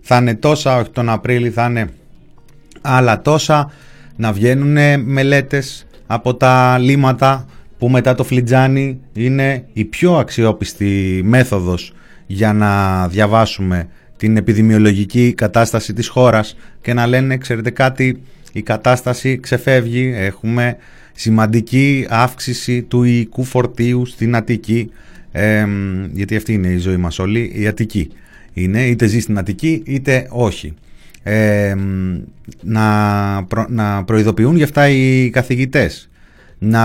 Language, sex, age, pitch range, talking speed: Greek, male, 30-49, 105-130 Hz, 125 wpm